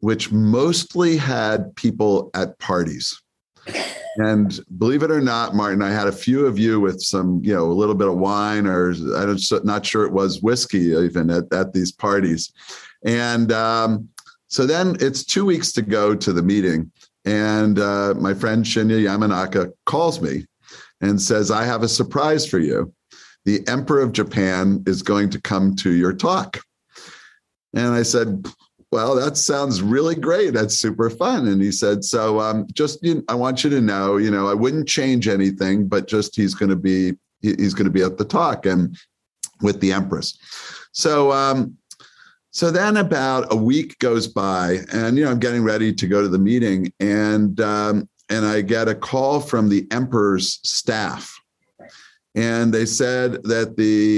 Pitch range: 100-120 Hz